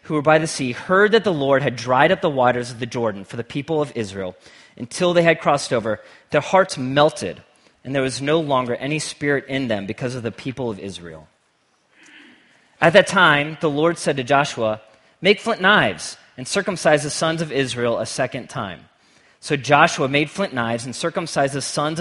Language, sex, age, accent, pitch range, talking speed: English, male, 30-49, American, 115-150 Hz, 200 wpm